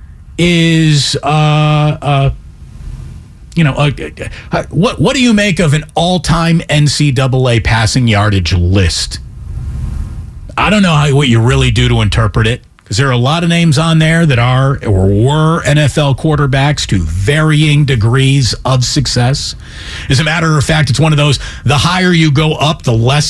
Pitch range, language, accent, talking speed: 120-165 Hz, English, American, 175 wpm